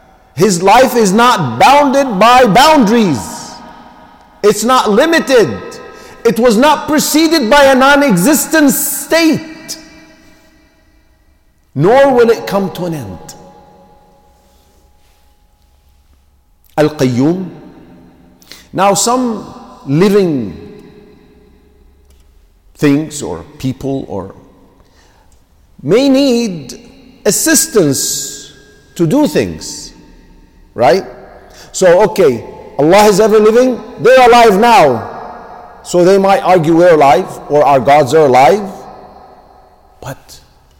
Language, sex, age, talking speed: English, male, 50-69, 90 wpm